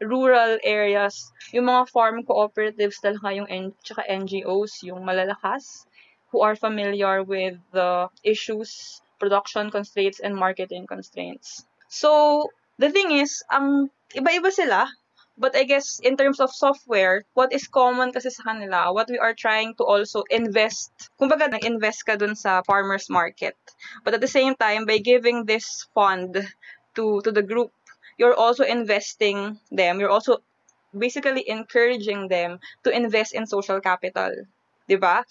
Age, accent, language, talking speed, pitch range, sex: 20-39, Filipino, English, 145 wpm, 200-250 Hz, female